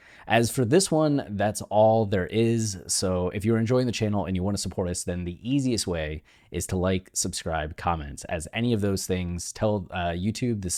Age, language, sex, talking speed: 20-39, English, male, 210 wpm